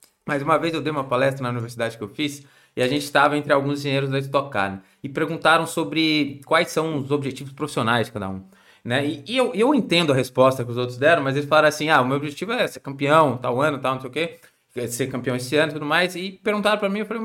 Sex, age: male, 20-39